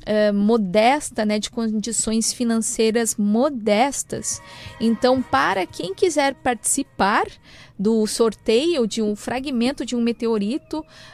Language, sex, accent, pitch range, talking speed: Portuguese, female, Brazilian, 220-275 Hz, 100 wpm